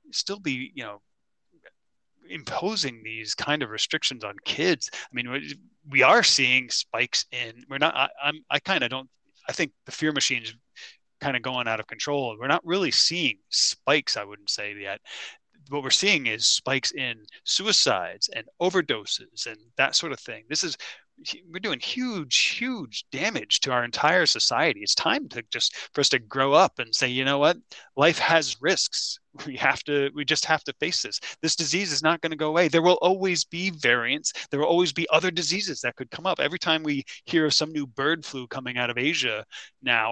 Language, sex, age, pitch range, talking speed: English, male, 30-49, 120-155 Hz, 200 wpm